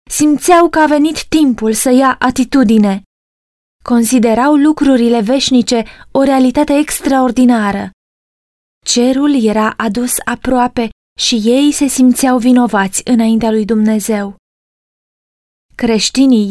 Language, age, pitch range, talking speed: Romanian, 20-39, 220-265 Hz, 100 wpm